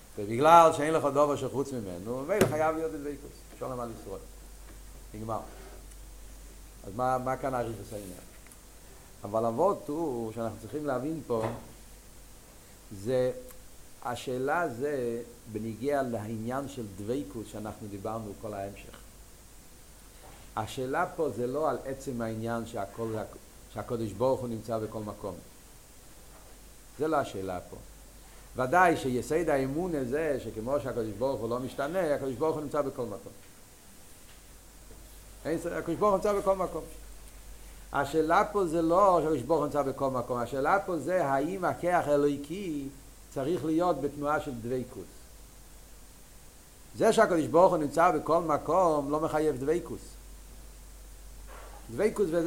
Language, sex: Hebrew, male